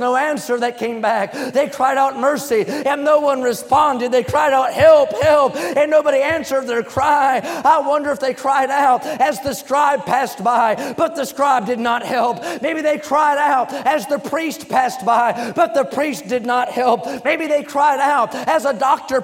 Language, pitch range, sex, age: English, 250-295 Hz, male, 30-49